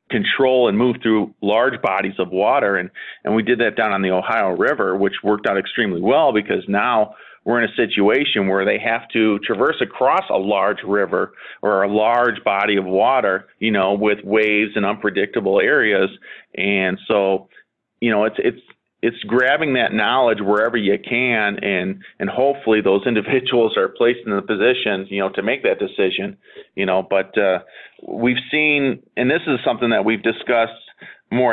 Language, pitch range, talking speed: English, 100-120 Hz, 180 wpm